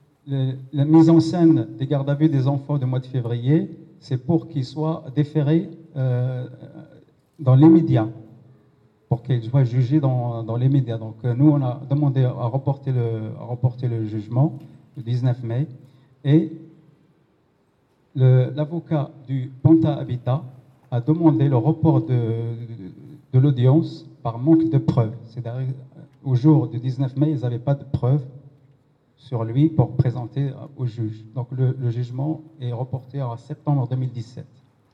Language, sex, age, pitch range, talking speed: French, male, 50-69, 125-155 Hz, 150 wpm